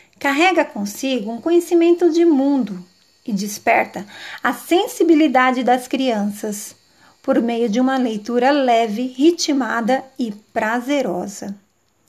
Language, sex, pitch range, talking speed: Portuguese, female, 220-290 Hz, 105 wpm